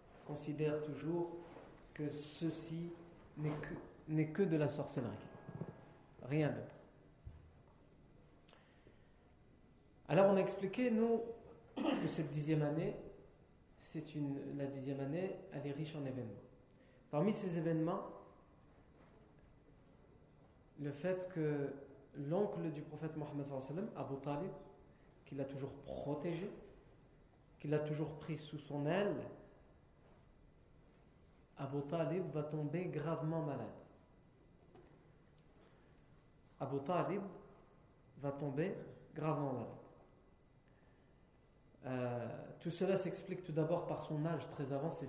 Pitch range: 145-180 Hz